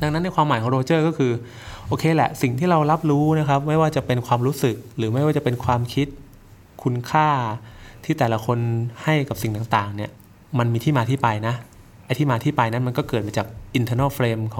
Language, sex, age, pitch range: Thai, male, 20-39, 110-140 Hz